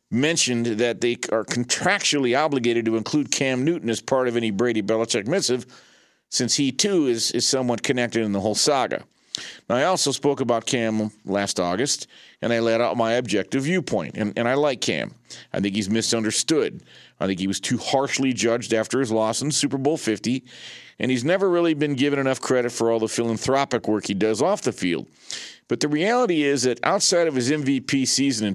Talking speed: 200 wpm